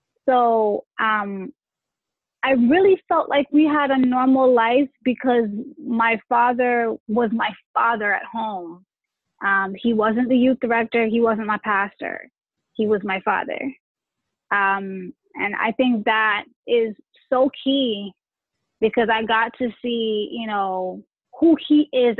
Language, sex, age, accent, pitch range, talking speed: English, female, 20-39, American, 210-265 Hz, 140 wpm